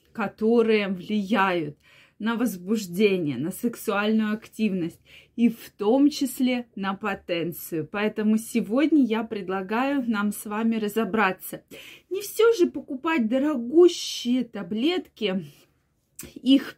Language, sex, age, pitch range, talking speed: Russian, female, 20-39, 205-255 Hz, 100 wpm